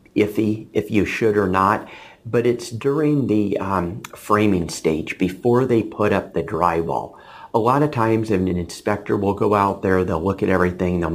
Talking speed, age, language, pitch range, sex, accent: 190 wpm, 40-59, English, 90-115 Hz, male, American